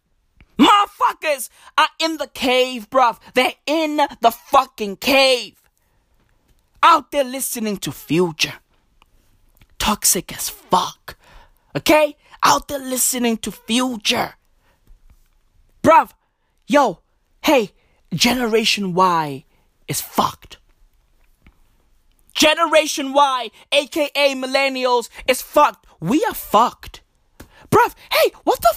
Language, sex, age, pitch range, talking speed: English, male, 20-39, 190-295 Hz, 95 wpm